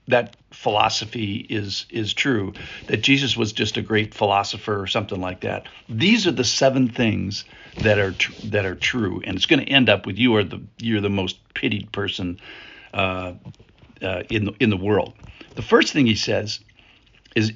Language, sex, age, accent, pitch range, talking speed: English, male, 60-79, American, 105-125 Hz, 190 wpm